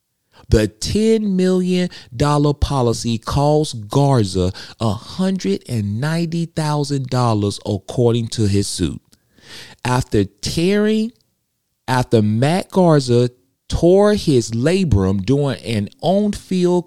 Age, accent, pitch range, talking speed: 40-59, American, 105-170 Hz, 75 wpm